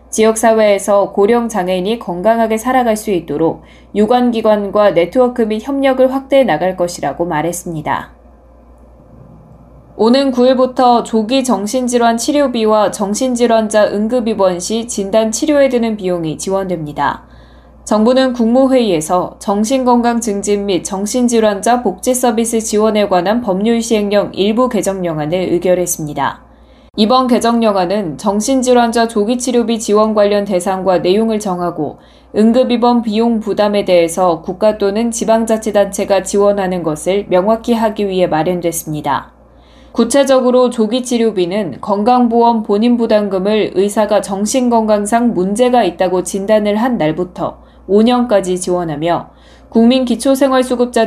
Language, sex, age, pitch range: Korean, female, 10-29, 185-235 Hz